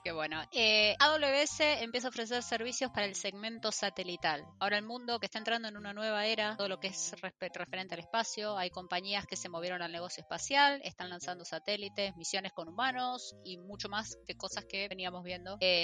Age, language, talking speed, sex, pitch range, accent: 20-39, Spanish, 200 wpm, female, 185-215 Hz, Argentinian